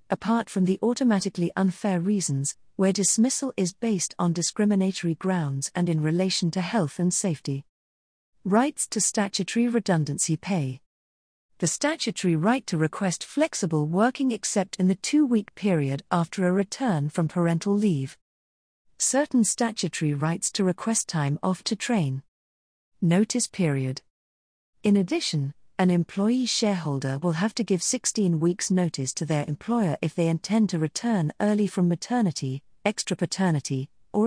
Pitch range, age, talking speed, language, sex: 155-210 Hz, 40-59, 140 wpm, English, female